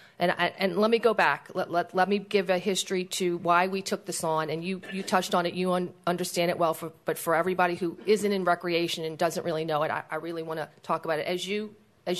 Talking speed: 270 wpm